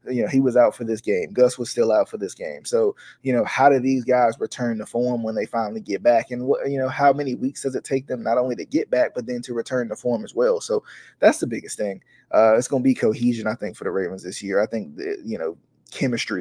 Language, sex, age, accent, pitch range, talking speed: English, male, 20-39, American, 115-130 Hz, 280 wpm